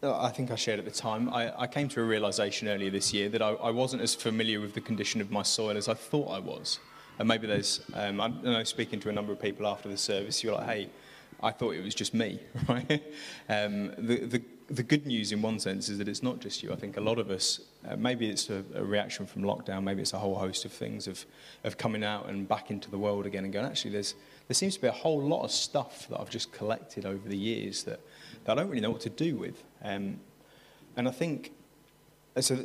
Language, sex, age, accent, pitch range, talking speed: English, male, 20-39, British, 100-120 Hz, 255 wpm